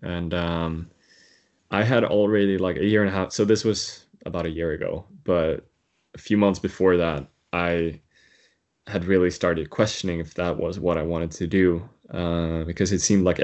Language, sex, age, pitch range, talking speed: English, male, 20-39, 85-95 Hz, 190 wpm